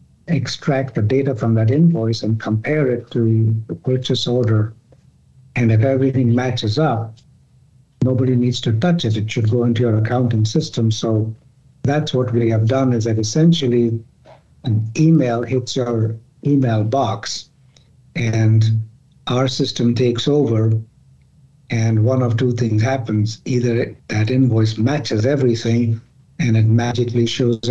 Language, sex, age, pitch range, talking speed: English, male, 60-79, 115-135 Hz, 140 wpm